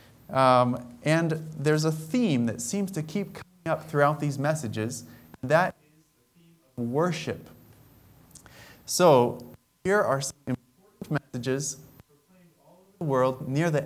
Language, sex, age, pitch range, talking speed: English, male, 30-49, 120-160 Hz, 145 wpm